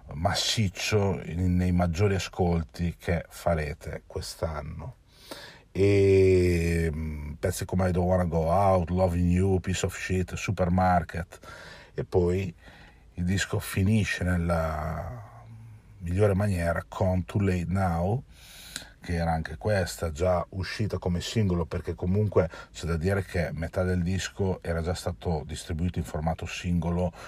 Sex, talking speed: male, 125 wpm